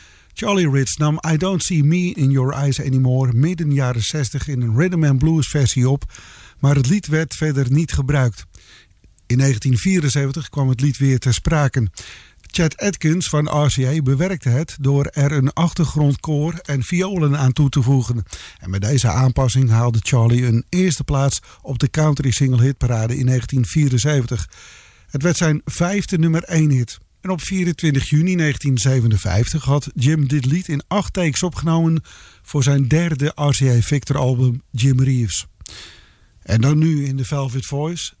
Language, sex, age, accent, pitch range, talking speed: English, male, 50-69, Dutch, 130-155 Hz, 160 wpm